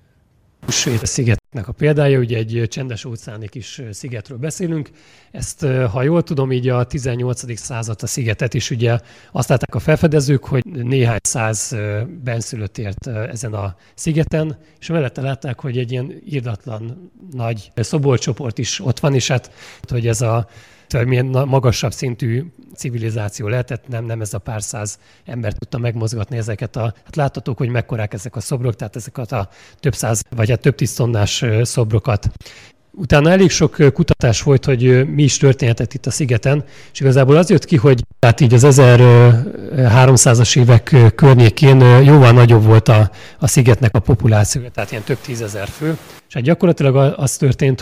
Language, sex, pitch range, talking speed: Hungarian, male, 115-140 Hz, 160 wpm